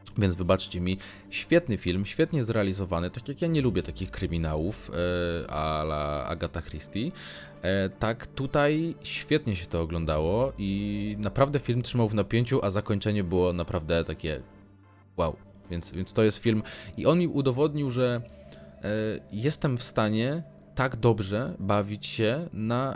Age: 20-39